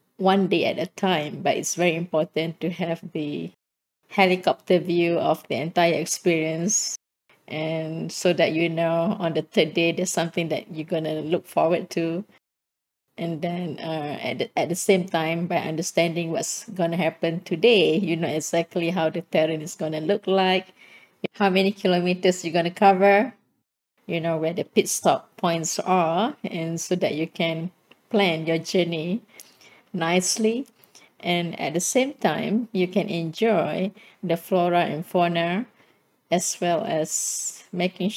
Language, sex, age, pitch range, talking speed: English, female, 20-39, 165-195 Hz, 160 wpm